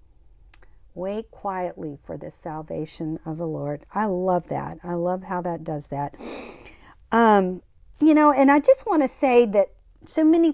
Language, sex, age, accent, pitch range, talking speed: English, female, 50-69, American, 180-250 Hz, 165 wpm